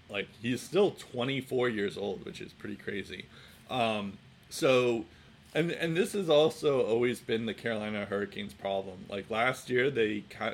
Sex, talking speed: male, 160 wpm